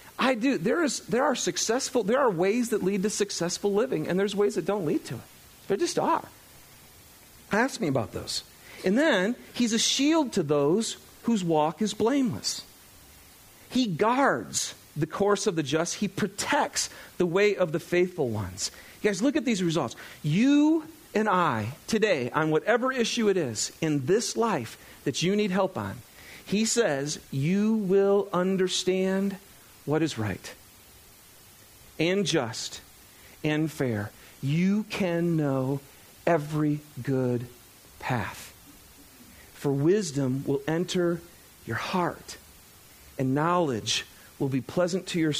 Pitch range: 125-200 Hz